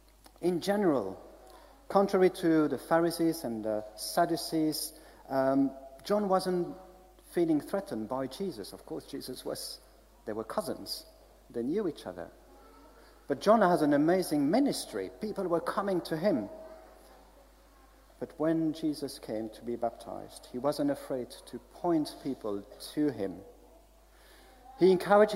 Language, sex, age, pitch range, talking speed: English, male, 50-69, 130-185 Hz, 130 wpm